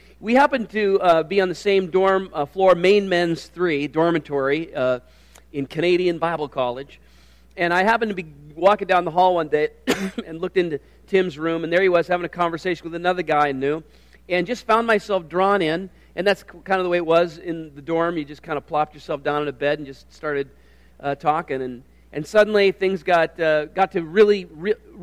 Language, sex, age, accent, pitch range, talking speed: English, male, 40-59, American, 145-180 Hz, 215 wpm